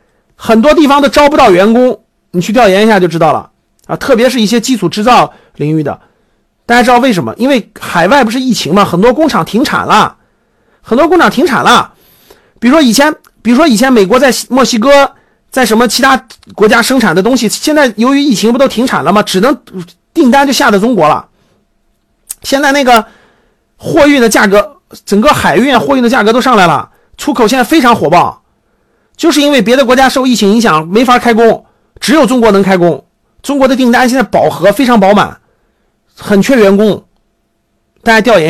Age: 50-69